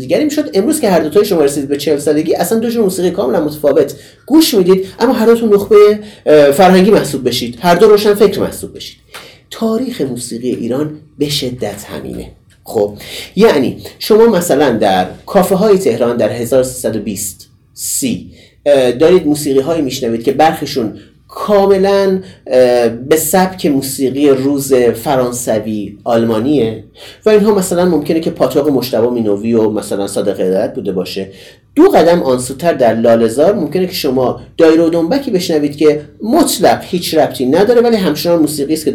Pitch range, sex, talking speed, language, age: 130-195 Hz, male, 150 wpm, Persian, 30-49